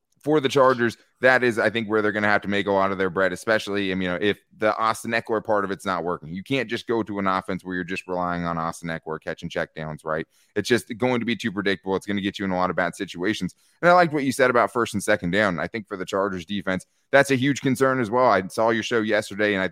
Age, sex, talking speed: 20-39, male, 285 wpm